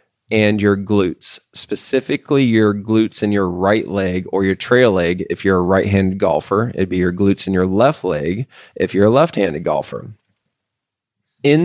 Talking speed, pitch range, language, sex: 170 wpm, 100-125 Hz, English, male